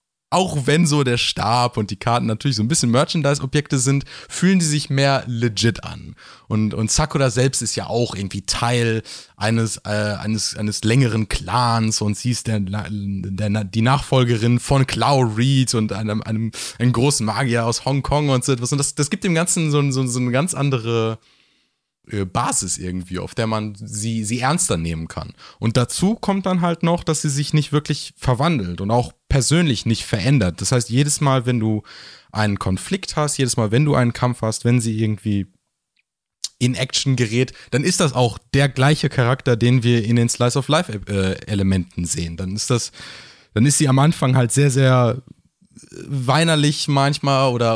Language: German